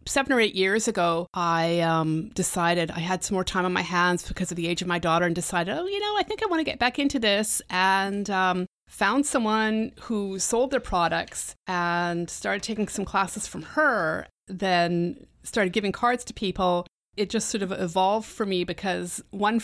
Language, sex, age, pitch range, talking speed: English, female, 30-49, 180-225 Hz, 205 wpm